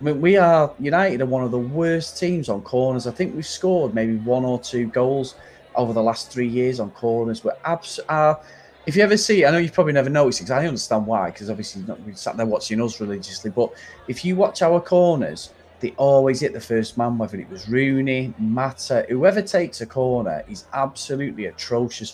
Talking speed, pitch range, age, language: 215 wpm, 115-140 Hz, 30-49, English